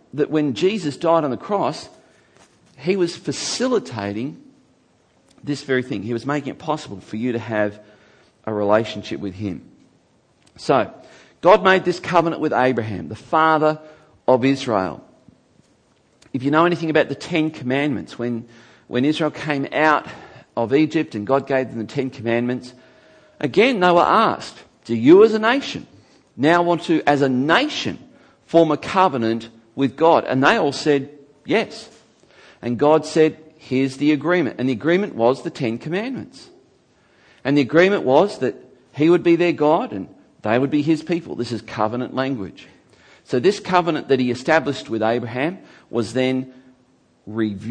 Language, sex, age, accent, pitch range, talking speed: English, male, 50-69, Australian, 120-160 Hz, 160 wpm